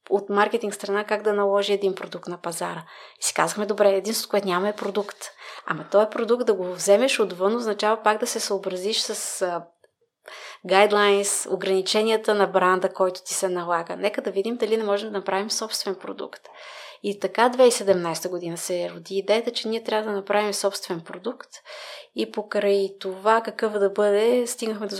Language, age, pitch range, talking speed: Bulgarian, 30-49, 190-220 Hz, 180 wpm